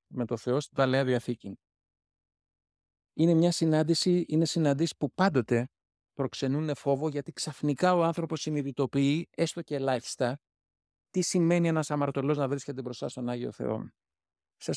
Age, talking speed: 50-69, 140 wpm